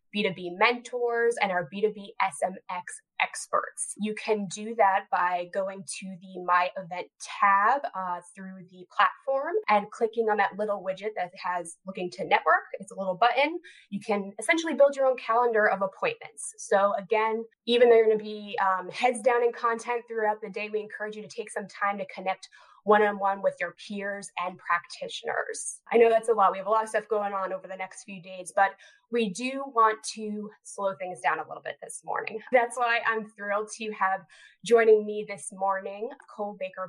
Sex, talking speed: female, 195 wpm